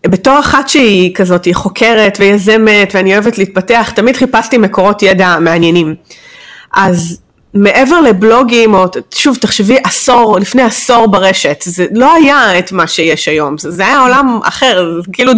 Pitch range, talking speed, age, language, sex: 185-240 Hz, 145 wpm, 30-49, Hebrew, female